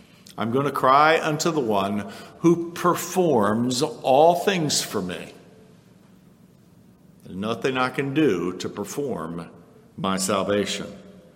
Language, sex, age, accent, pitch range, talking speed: English, male, 60-79, American, 95-150 Hz, 110 wpm